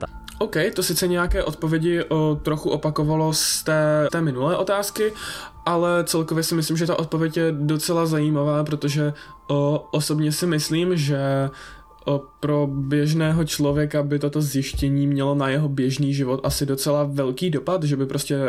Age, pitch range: 20-39, 135-155 Hz